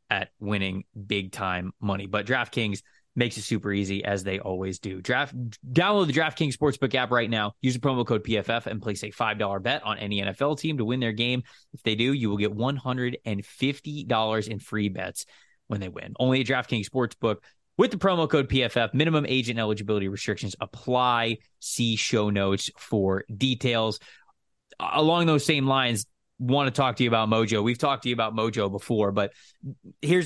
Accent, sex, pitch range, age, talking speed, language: American, male, 105-135 Hz, 20-39, 195 wpm, English